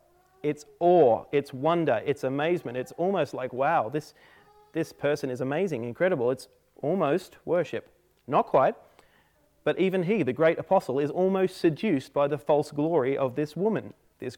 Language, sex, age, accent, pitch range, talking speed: English, male, 30-49, Australian, 140-190 Hz, 160 wpm